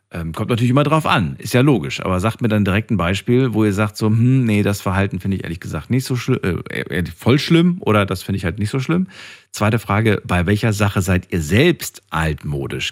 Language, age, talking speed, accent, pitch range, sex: German, 40-59, 230 wpm, German, 90-110 Hz, male